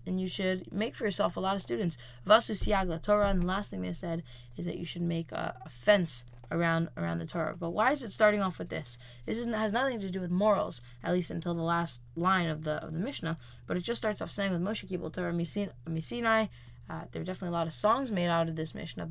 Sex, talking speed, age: female, 255 wpm, 20-39